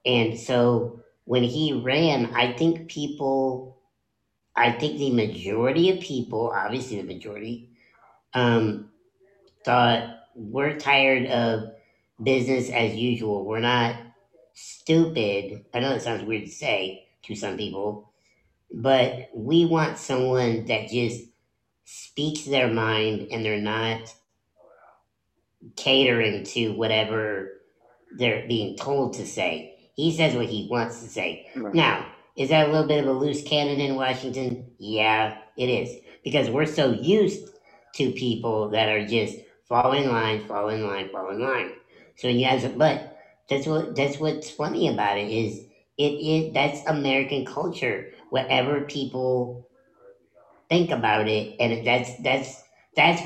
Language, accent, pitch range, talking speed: English, American, 110-140 Hz, 140 wpm